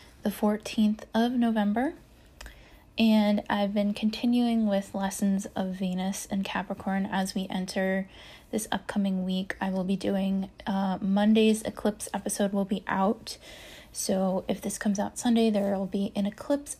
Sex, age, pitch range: female, 20-39, 195-215 Hz